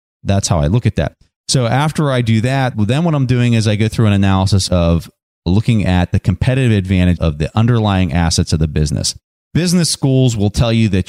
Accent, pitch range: American, 90-120 Hz